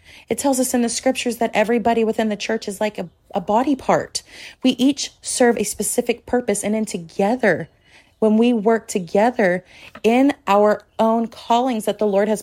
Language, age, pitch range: English, 30-49, 200-240 Hz